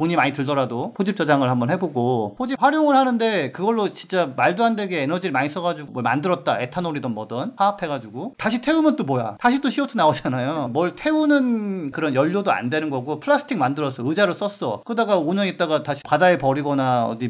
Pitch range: 130-200 Hz